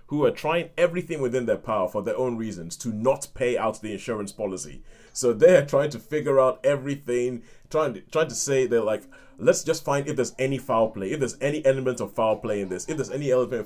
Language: English